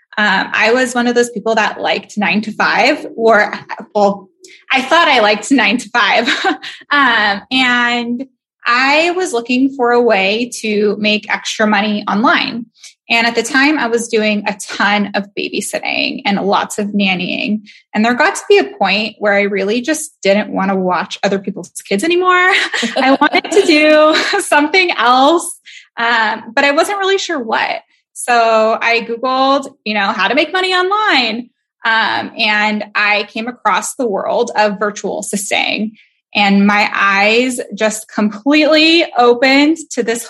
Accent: American